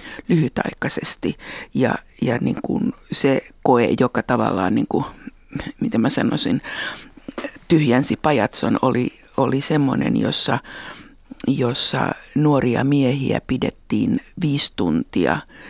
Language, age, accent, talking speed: Finnish, 60-79, native, 100 wpm